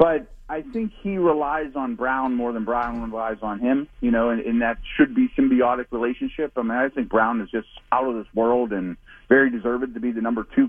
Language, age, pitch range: English, 40-59, 115-170 Hz